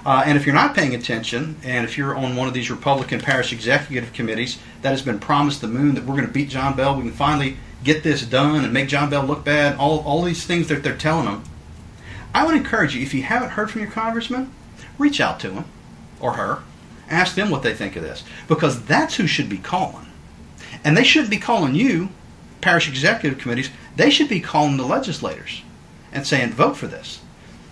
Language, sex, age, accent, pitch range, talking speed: English, male, 40-59, American, 130-185 Hz, 220 wpm